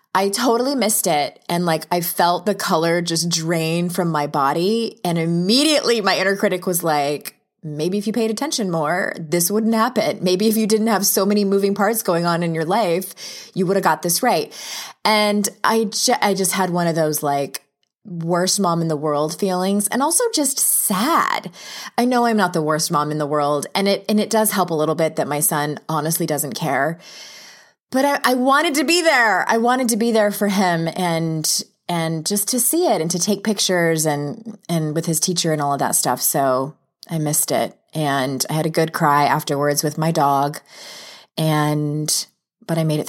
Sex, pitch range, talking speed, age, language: female, 160-210 Hz, 210 wpm, 20-39, English